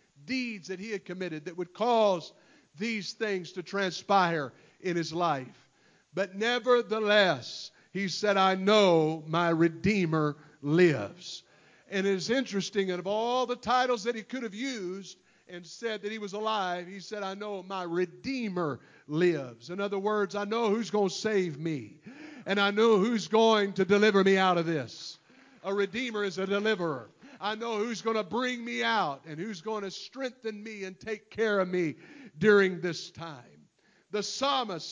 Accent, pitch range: American, 180-220 Hz